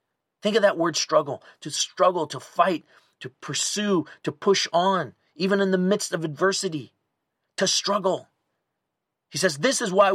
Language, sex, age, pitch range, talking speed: English, male, 40-59, 145-190 Hz, 160 wpm